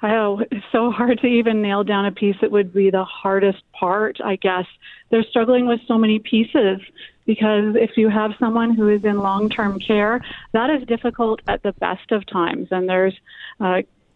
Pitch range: 190-225 Hz